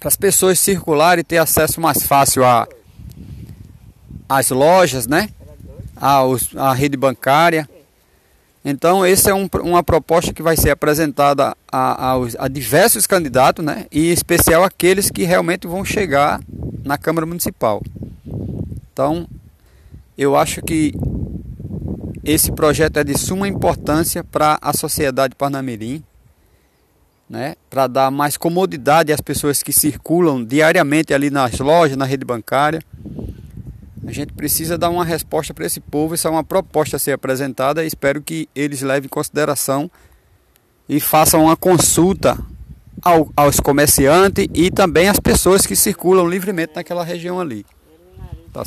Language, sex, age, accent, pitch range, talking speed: Portuguese, male, 20-39, Brazilian, 135-170 Hz, 140 wpm